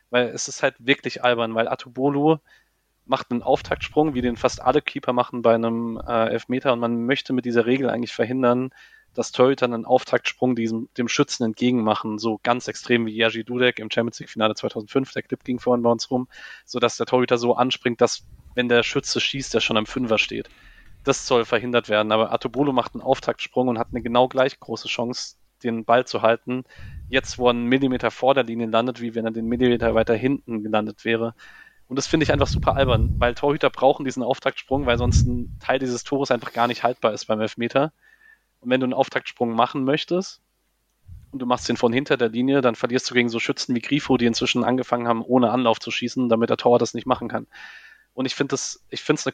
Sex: male